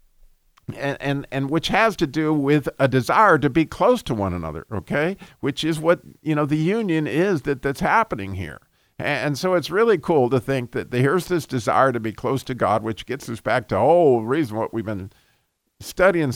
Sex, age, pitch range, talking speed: male, 50-69, 120-155 Hz, 210 wpm